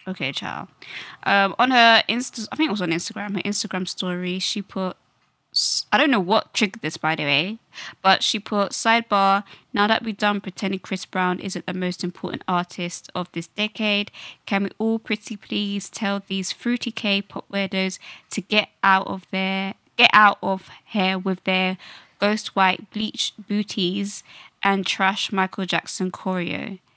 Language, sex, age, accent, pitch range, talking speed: English, female, 20-39, British, 185-215 Hz, 170 wpm